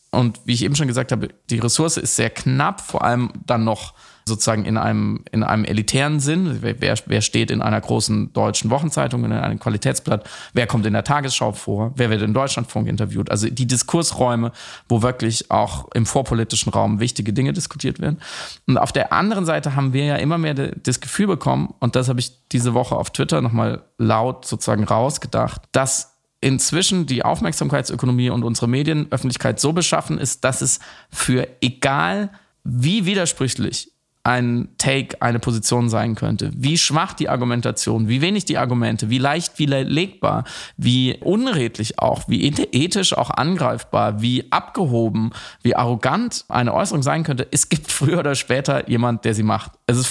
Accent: German